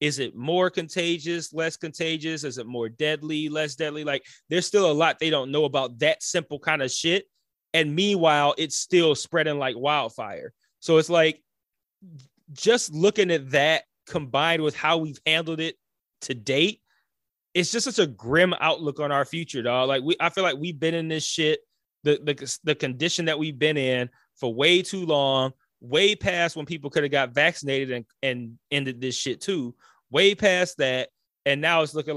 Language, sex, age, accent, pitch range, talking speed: English, male, 20-39, American, 130-170 Hz, 190 wpm